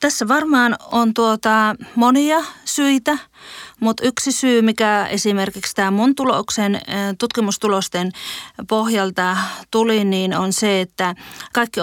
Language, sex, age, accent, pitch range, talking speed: Finnish, female, 30-49, native, 185-230 Hz, 100 wpm